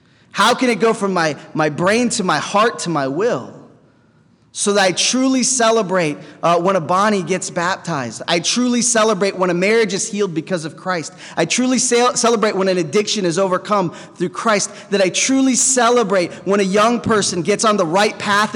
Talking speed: 190 wpm